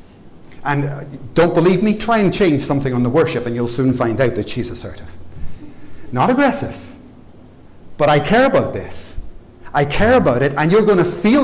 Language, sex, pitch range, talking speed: English, male, 115-150 Hz, 180 wpm